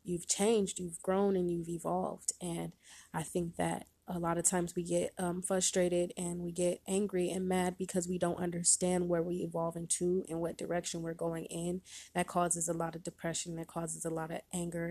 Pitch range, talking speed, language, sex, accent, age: 170-185 Hz, 205 wpm, English, female, American, 20-39